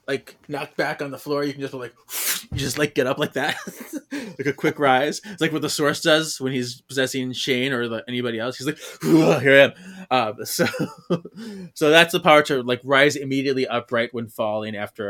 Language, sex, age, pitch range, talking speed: English, male, 20-39, 120-160 Hz, 210 wpm